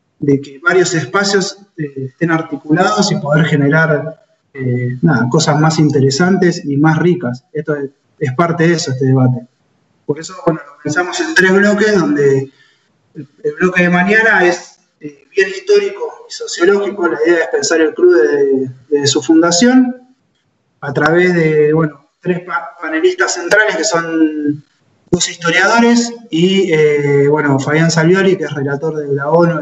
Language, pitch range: Spanish, 140-180 Hz